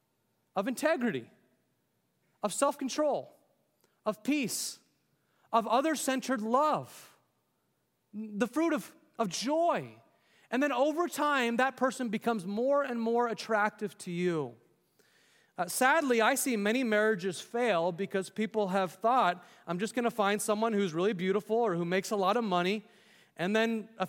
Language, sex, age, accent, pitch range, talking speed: English, male, 30-49, American, 180-230 Hz, 140 wpm